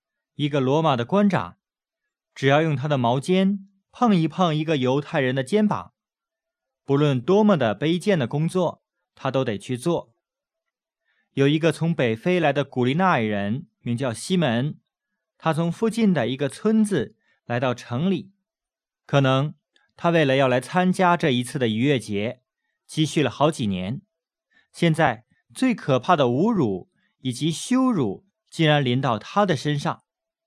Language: English